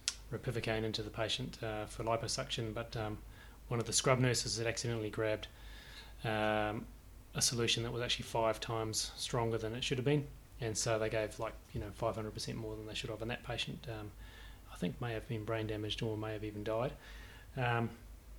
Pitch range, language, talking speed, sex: 110-120 Hz, English, 195 wpm, male